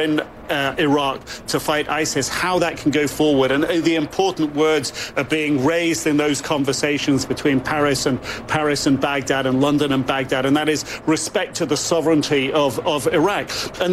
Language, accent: English, British